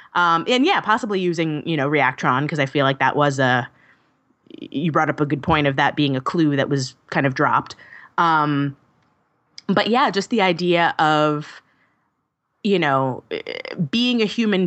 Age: 20-39